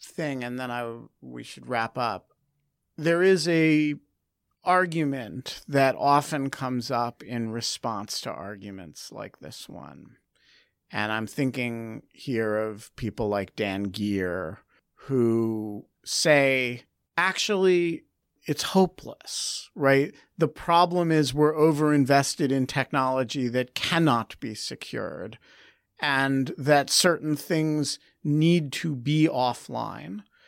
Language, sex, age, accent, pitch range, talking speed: English, male, 50-69, American, 120-160 Hz, 115 wpm